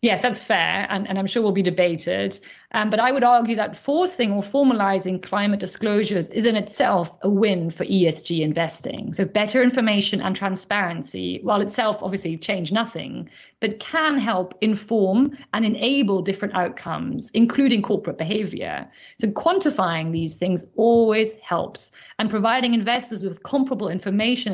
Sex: female